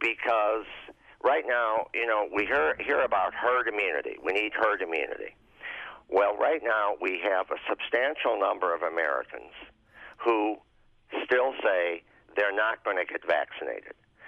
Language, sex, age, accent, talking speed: English, male, 50-69, American, 145 wpm